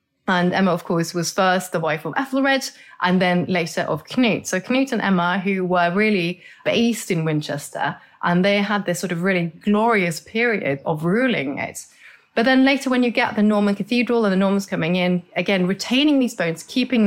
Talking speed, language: 195 wpm, English